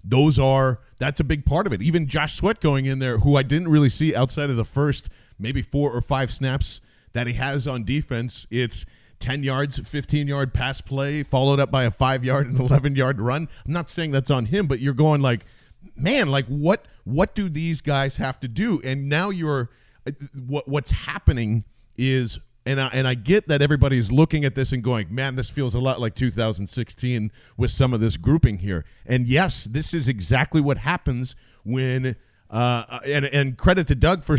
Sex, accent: male, American